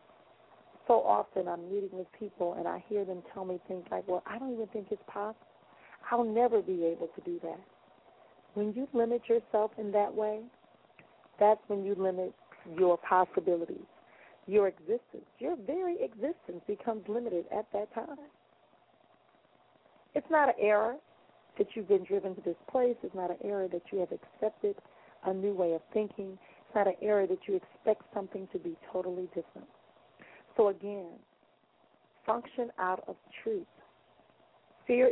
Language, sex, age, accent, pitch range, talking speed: English, female, 40-59, American, 185-240 Hz, 160 wpm